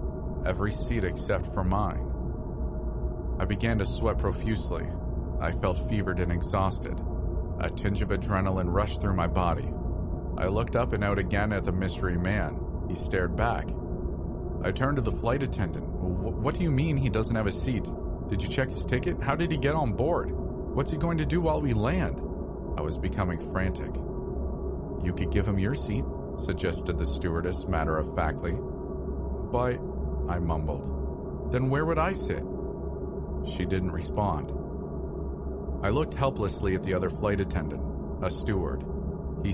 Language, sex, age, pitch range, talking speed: English, male, 40-59, 75-95 Hz, 160 wpm